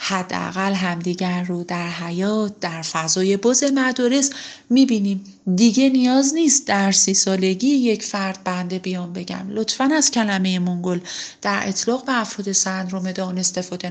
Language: Persian